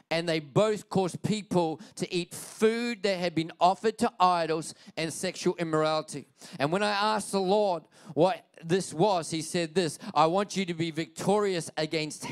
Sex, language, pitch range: male, English, 175-220 Hz